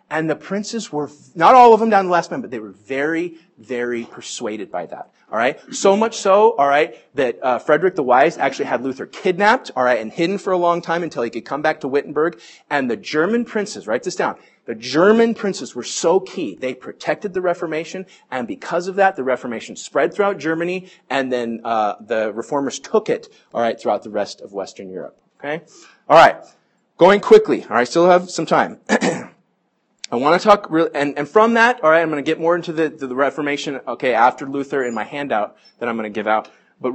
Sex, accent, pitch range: male, American, 130-185 Hz